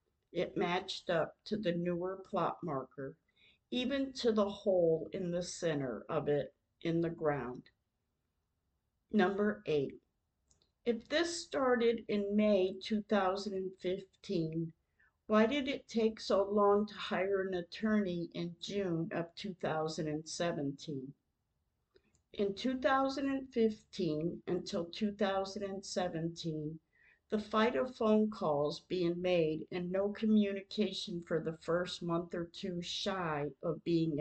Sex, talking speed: female, 115 wpm